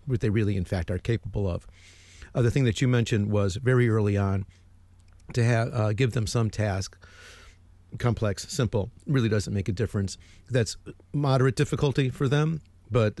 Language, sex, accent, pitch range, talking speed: English, male, American, 90-120 Hz, 170 wpm